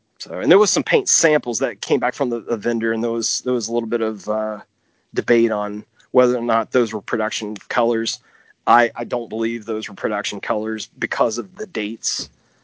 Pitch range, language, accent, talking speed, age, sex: 105-115 Hz, English, American, 215 wpm, 30-49, male